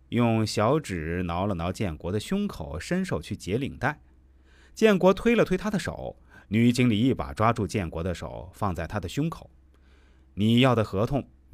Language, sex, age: Chinese, male, 30-49